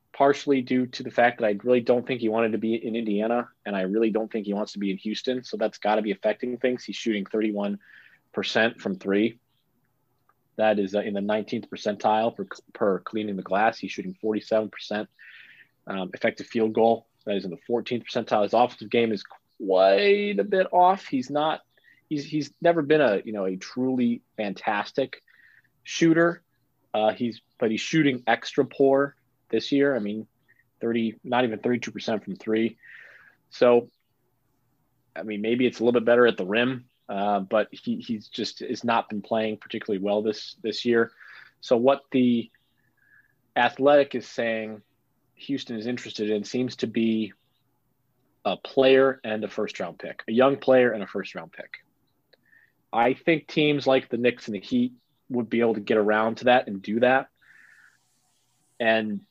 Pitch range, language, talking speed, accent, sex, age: 110-130 Hz, English, 180 wpm, American, male, 30-49